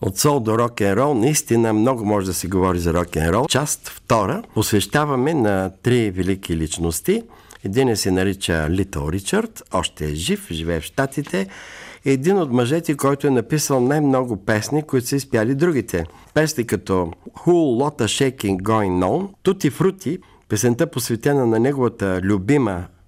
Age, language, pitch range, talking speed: 60-79, Bulgarian, 100-150 Hz, 150 wpm